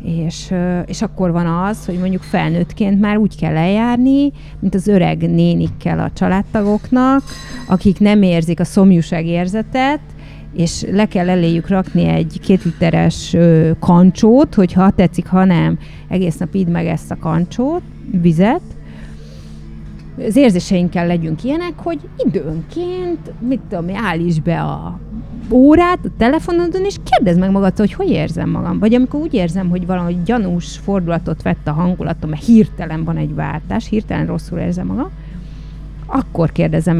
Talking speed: 140 wpm